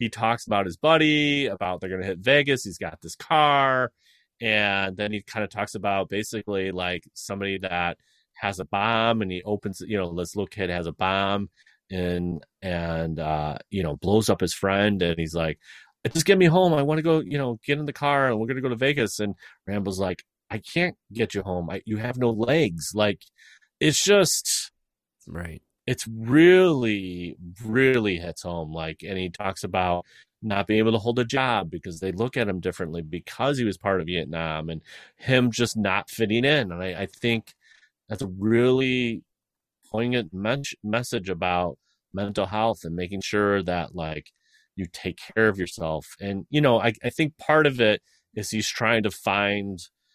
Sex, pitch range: male, 90-120 Hz